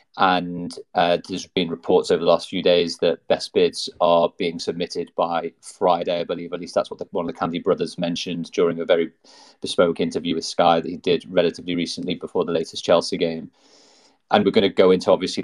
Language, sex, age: English, male, 30-49